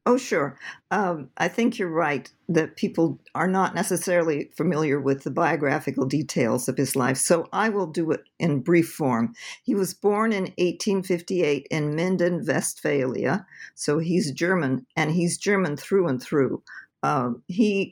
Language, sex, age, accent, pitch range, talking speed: English, female, 50-69, American, 140-190 Hz, 155 wpm